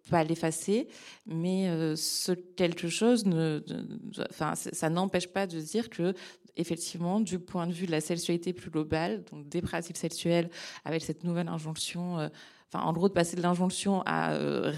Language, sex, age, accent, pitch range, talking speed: French, female, 20-39, French, 165-190 Hz, 175 wpm